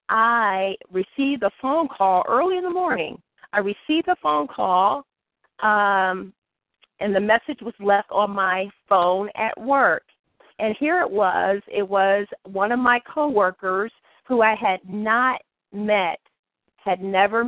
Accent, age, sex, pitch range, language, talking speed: American, 40-59, female, 190-230 Hz, English, 145 wpm